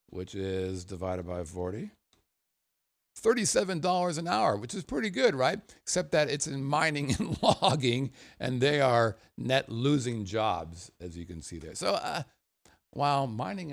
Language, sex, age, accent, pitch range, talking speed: English, male, 50-69, American, 95-135 Hz, 155 wpm